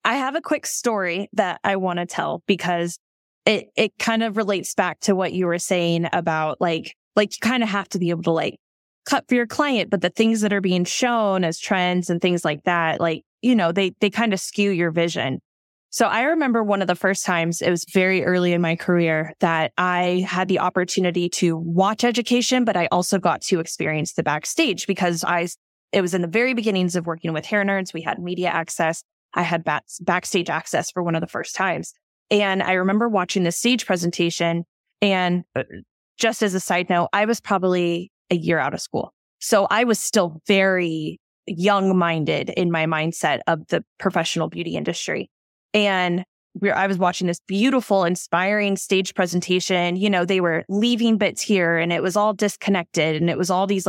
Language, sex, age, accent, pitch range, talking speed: English, female, 20-39, American, 170-205 Hz, 200 wpm